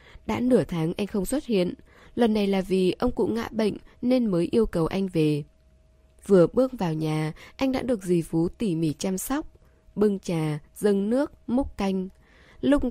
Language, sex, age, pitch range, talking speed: Vietnamese, female, 10-29, 160-230 Hz, 190 wpm